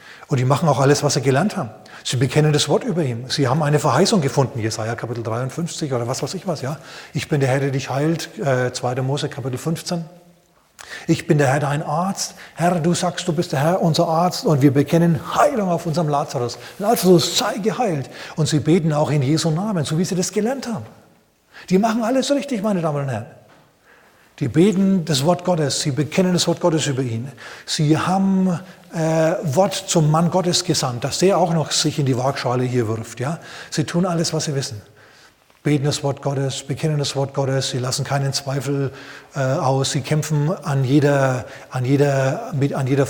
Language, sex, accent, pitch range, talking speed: German, male, German, 135-175 Hz, 200 wpm